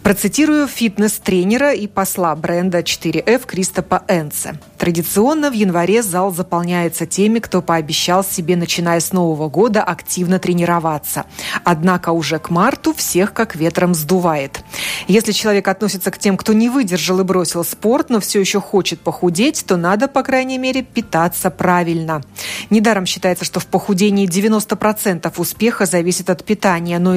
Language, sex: Russian, female